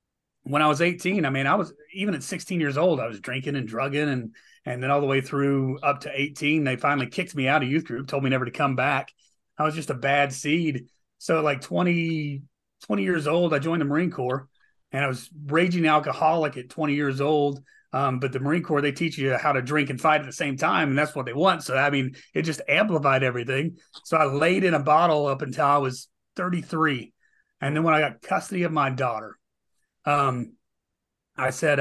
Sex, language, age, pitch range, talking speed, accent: male, English, 30-49, 135-155 Hz, 225 wpm, American